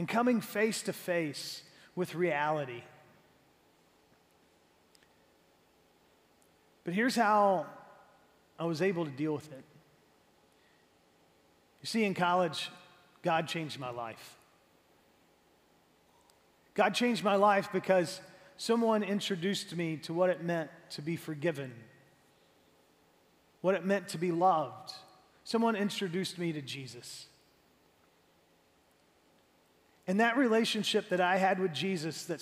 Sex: male